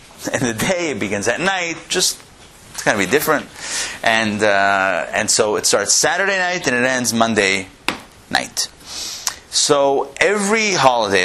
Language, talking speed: English, 155 wpm